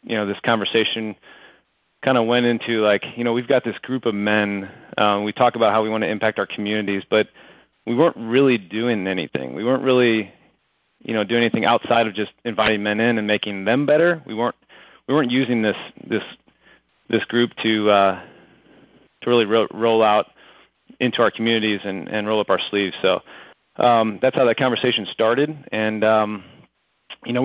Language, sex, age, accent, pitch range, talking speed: English, male, 30-49, American, 105-120 Hz, 190 wpm